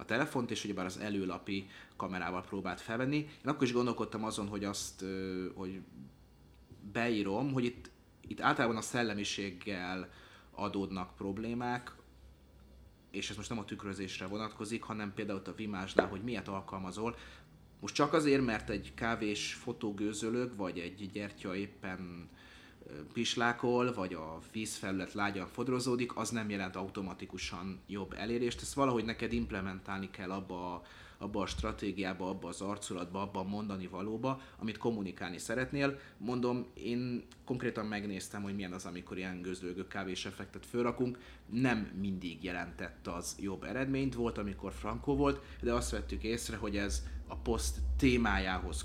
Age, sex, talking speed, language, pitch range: 30-49, male, 140 wpm, Hungarian, 95-115 Hz